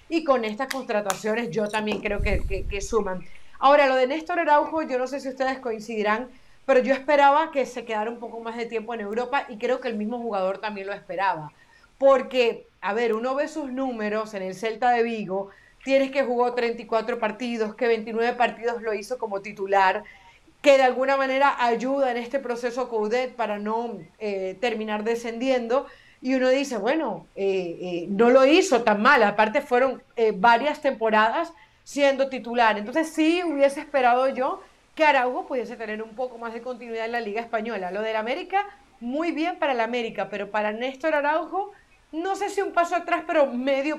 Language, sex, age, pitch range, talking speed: Spanish, female, 30-49, 220-275 Hz, 185 wpm